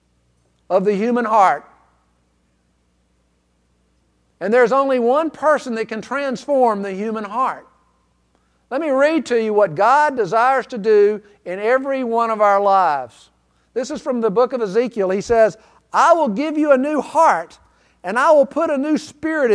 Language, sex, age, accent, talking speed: English, male, 50-69, American, 165 wpm